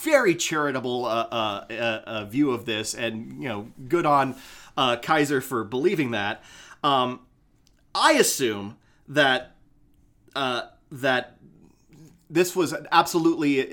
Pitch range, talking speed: 130-185 Hz, 120 wpm